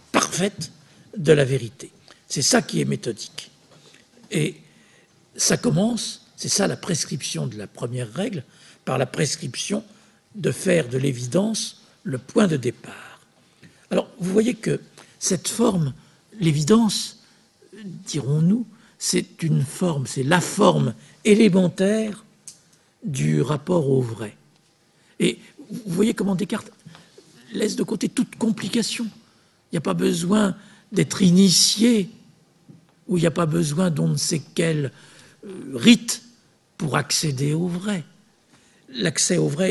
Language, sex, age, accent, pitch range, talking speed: French, male, 60-79, French, 160-215 Hz, 130 wpm